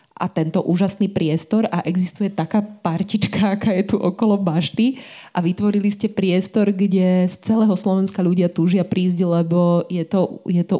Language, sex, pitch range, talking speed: Slovak, female, 175-200 Hz, 160 wpm